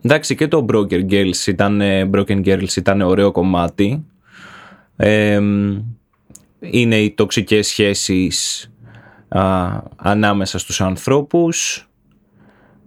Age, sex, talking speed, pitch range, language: 20-39, male, 95 wpm, 100-125 Hz, Greek